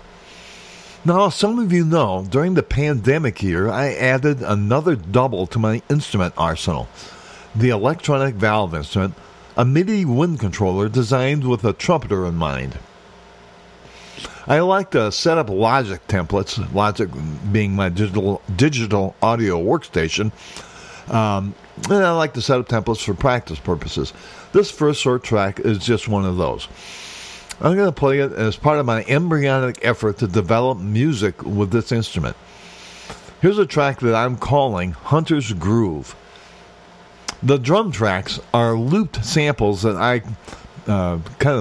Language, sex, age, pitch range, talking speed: English, male, 50-69, 100-140 Hz, 145 wpm